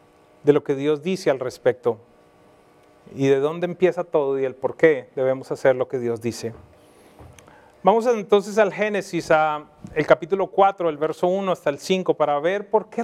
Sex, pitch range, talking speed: male, 155-205 Hz, 185 wpm